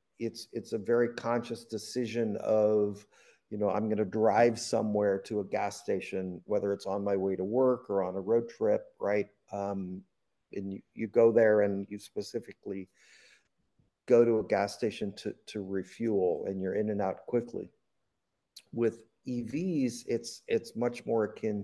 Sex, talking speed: male, 170 wpm